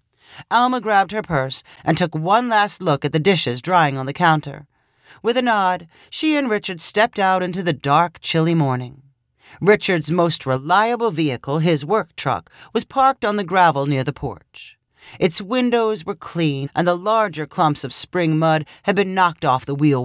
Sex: male